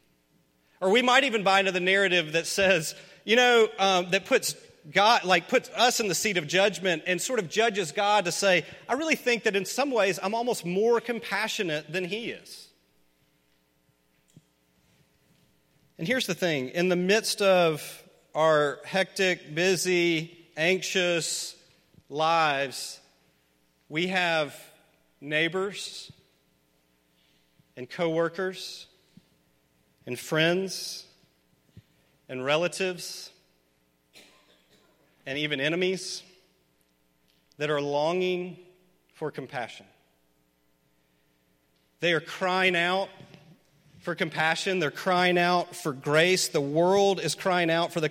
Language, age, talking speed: English, 40-59, 115 wpm